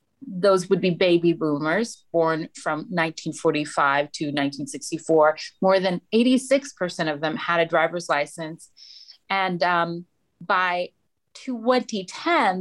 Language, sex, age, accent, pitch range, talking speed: English, female, 30-49, American, 160-195 Hz, 110 wpm